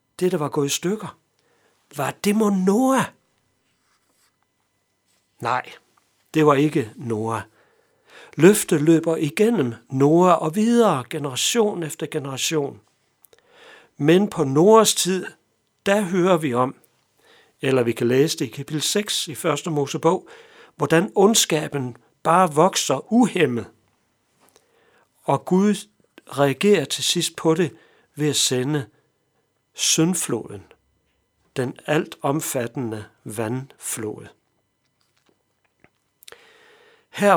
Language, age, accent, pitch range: Danish, 60-79, native, 140-190 Hz